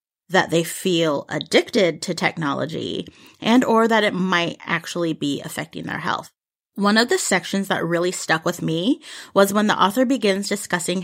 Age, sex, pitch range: 30-49, female, 165-205 Hz